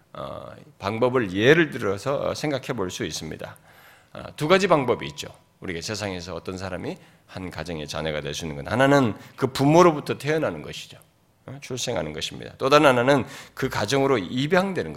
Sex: male